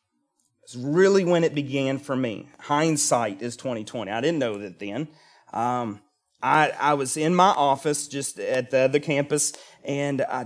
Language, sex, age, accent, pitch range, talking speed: English, male, 30-49, American, 135-170 Hz, 165 wpm